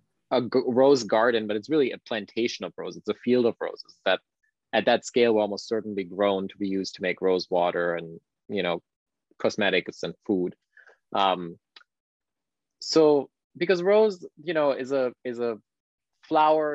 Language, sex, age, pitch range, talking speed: English, male, 20-39, 100-135 Hz, 170 wpm